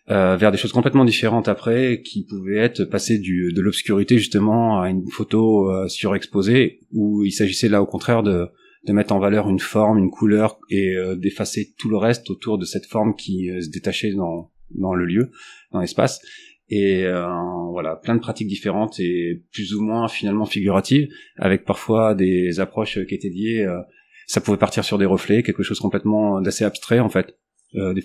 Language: French